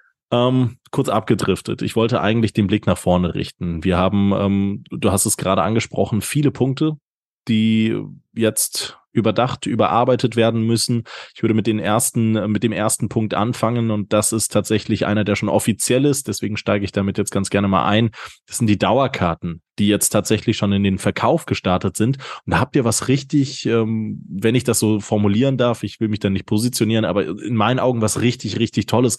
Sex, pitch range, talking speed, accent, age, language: male, 100-115 Hz, 195 wpm, German, 20-39, German